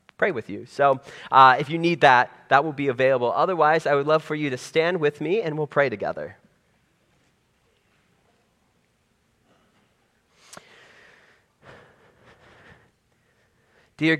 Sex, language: male, English